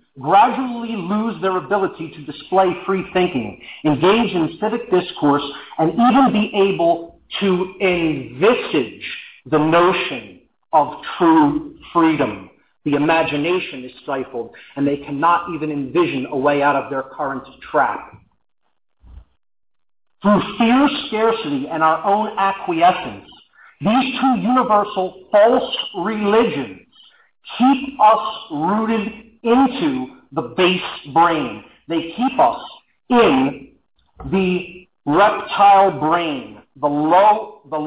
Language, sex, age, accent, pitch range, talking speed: English, male, 40-59, American, 160-215 Hz, 105 wpm